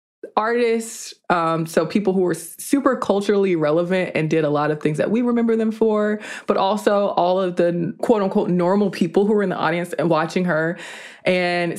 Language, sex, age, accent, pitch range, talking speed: English, female, 20-39, American, 170-210 Hz, 190 wpm